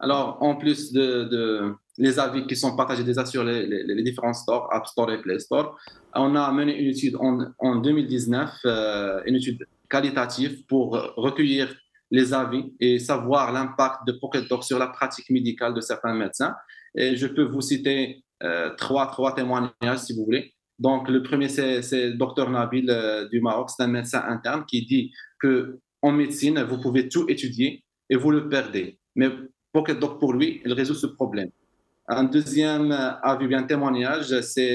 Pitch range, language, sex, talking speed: 125-145 Hz, French, male, 180 wpm